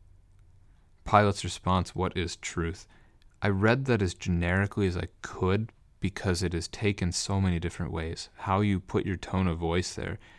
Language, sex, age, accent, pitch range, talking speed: English, male, 30-49, American, 85-100 Hz, 170 wpm